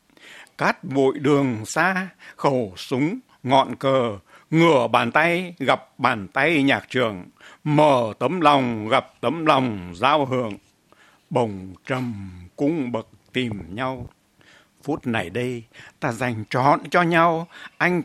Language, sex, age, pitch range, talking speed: Vietnamese, male, 60-79, 120-150 Hz, 130 wpm